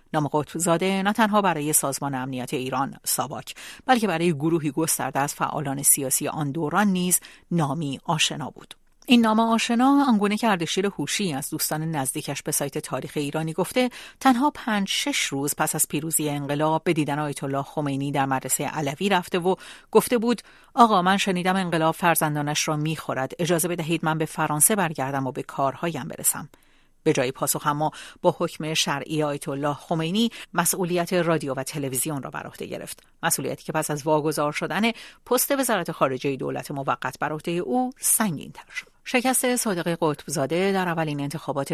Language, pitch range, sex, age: English, 145-190 Hz, female, 50-69